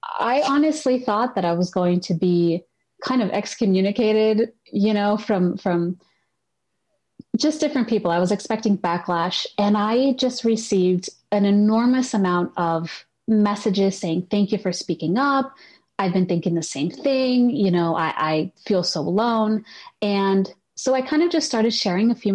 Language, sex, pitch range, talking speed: English, female, 175-225 Hz, 165 wpm